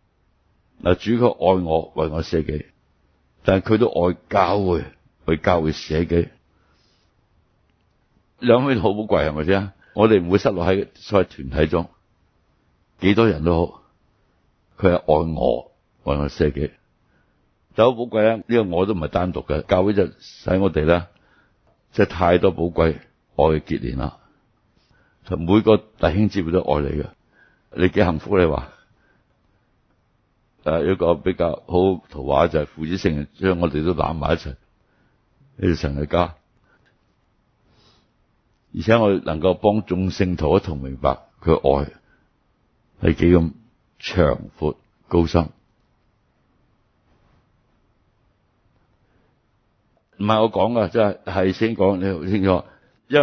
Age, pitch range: 60-79, 80-105 Hz